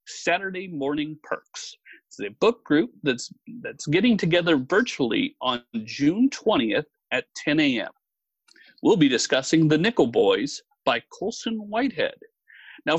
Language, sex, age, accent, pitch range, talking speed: English, male, 40-59, American, 155-250 Hz, 130 wpm